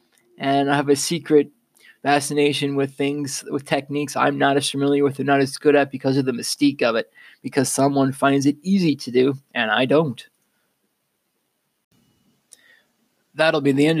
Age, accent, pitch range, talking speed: 20-39, American, 135-160 Hz, 170 wpm